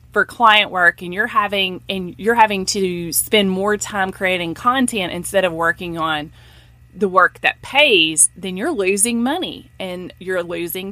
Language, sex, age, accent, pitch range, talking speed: English, female, 30-49, American, 175-230 Hz, 165 wpm